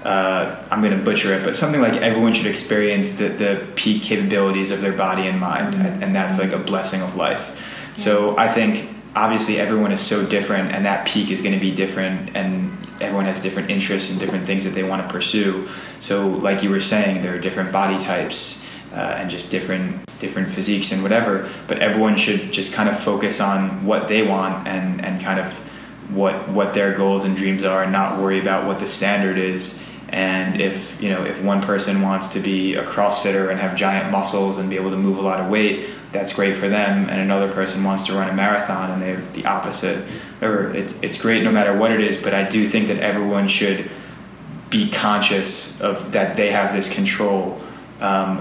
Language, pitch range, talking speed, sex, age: English, 95-105 Hz, 215 wpm, male, 20-39